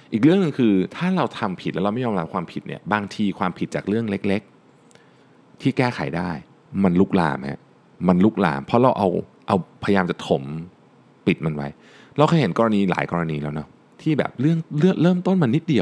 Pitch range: 95-150 Hz